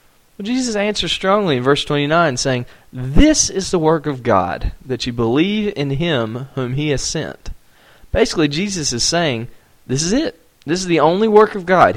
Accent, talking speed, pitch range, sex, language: American, 185 wpm, 120-180 Hz, male, English